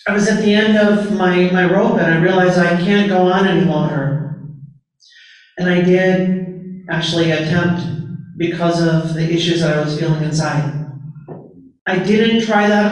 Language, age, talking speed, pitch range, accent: English, 40-59, 165 wpm, 160-185 Hz, American